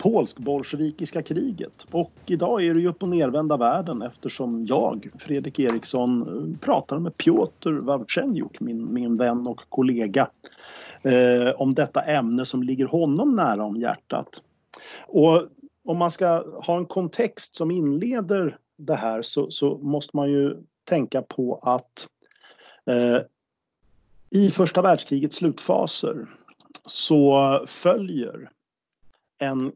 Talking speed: 120 wpm